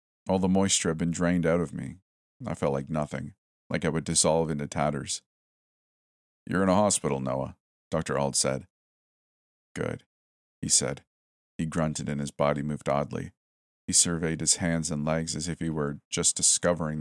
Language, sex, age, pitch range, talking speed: English, male, 40-59, 70-95 Hz, 175 wpm